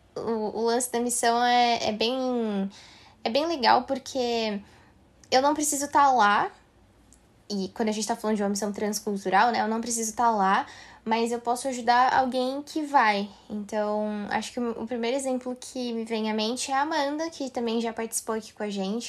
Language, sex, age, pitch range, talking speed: Portuguese, female, 10-29, 210-275 Hz, 190 wpm